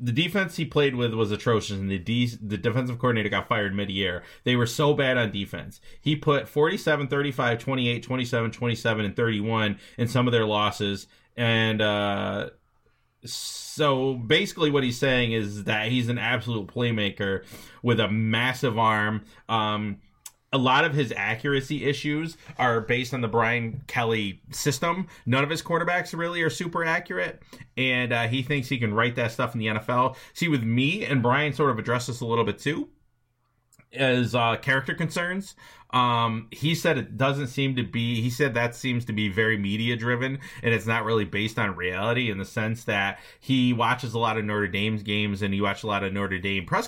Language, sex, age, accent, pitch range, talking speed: English, male, 30-49, American, 110-135 Hz, 190 wpm